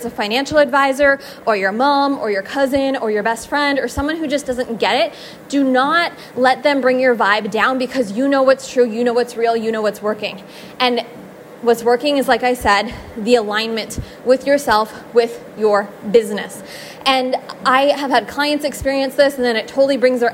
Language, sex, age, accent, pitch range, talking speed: English, female, 20-39, American, 225-275 Hz, 200 wpm